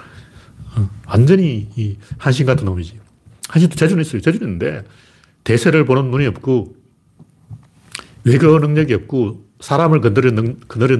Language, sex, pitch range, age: Korean, male, 115-155 Hz, 40-59